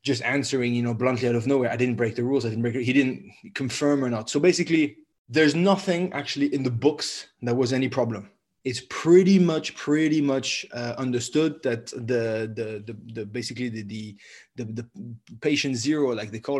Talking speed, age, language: 205 wpm, 20-39, English